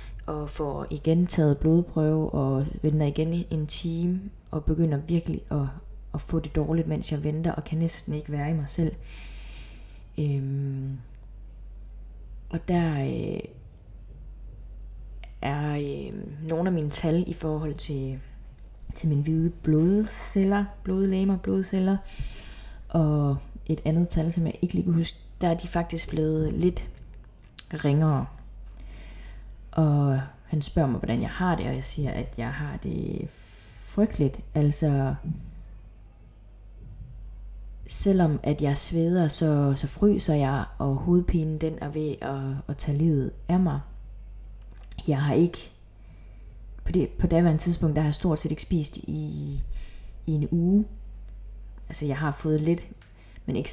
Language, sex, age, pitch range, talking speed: Danish, female, 20-39, 125-165 Hz, 140 wpm